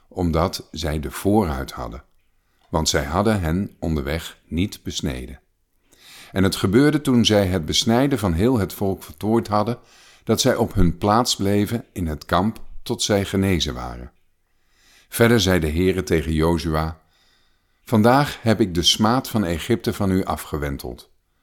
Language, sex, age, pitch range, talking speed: Dutch, male, 50-69, 80-110 Hz, 150 wpm